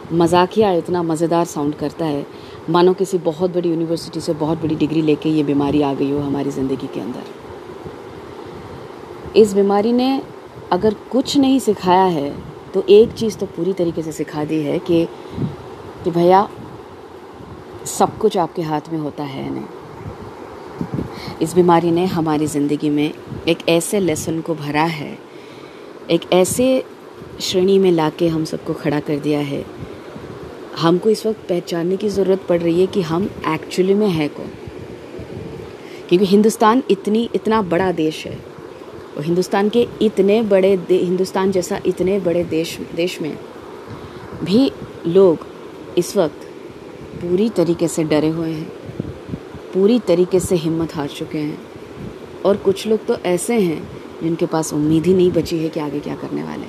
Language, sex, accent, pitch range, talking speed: Hindi, female, native, 160-195 Hz, 155 wpm